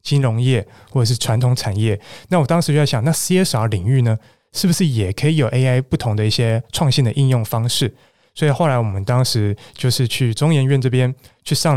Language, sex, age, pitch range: Chinese, male, 20-39, 115-145 Hz